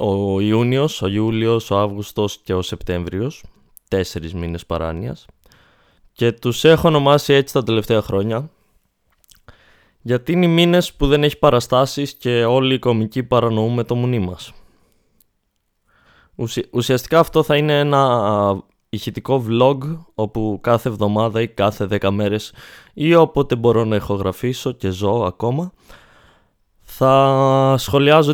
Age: 20-39